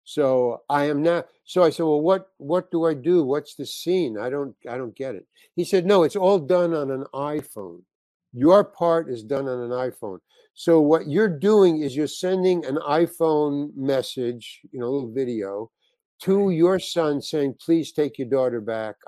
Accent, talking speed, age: American, 195 wpm, 60-79